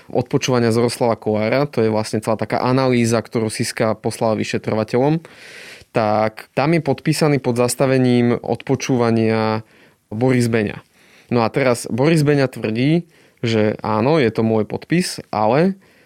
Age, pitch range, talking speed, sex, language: 20-39, 115-135 Hz, 135 wpm, male, Slovak